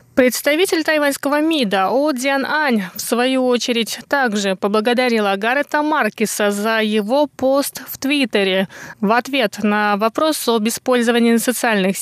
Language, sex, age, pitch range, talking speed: Russian, female, 20-39, 195-265 Hz, 125 wpm